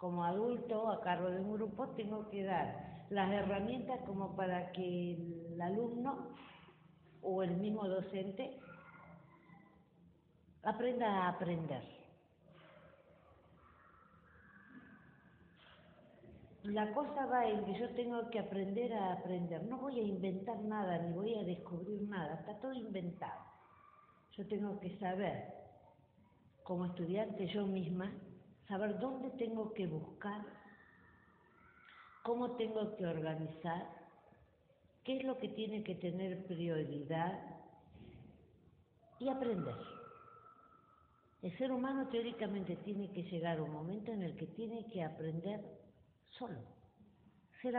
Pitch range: 175-220 Hz